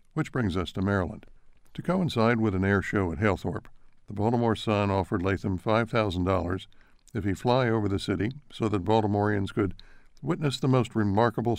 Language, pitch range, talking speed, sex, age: English, 95-115 Hz, 180 wpm, male, 60-79